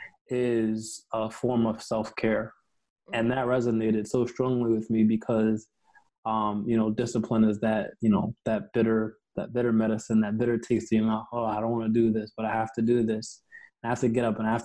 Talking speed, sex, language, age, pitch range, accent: 215 wpm, male, English, 20-39, 110-120 Hz, American